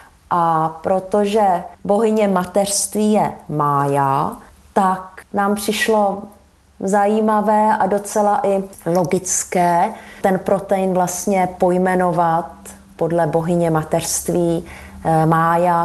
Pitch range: 180-215 Hz